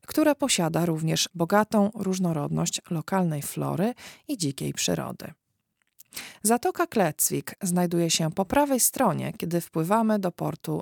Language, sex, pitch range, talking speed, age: Polish, female, 160-220 Hz, 115 wpm, 40-59